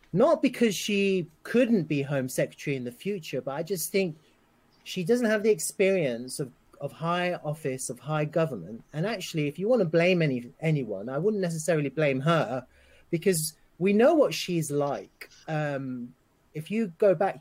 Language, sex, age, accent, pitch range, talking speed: English, male, 30-49, British, 130-170 Hz, 175 wpm